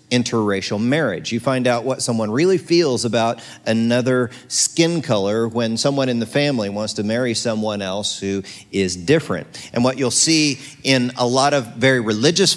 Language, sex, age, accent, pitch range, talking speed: English, male, 40-59, American, 110-130 Hz, 170 wpm